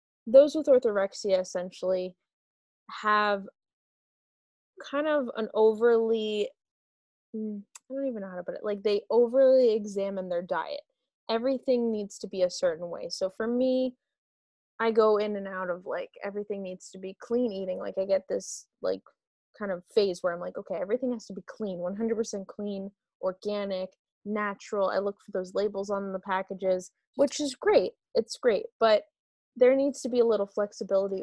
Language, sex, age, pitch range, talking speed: English, female, 20-39, 195-245 Hz, 165 wpm